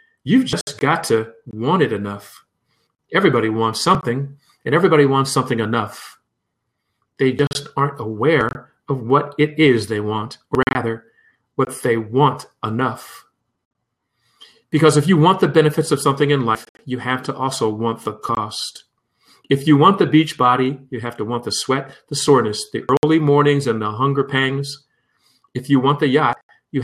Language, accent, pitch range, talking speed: English, American, 115-145 Hz, 170 wpm